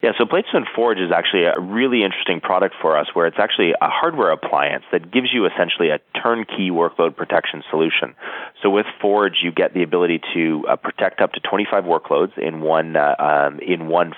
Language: English